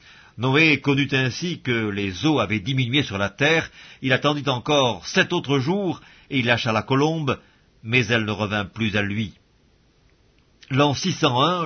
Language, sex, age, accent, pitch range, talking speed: English, male, 50-69, French, 120-170 Hz, 160 wpm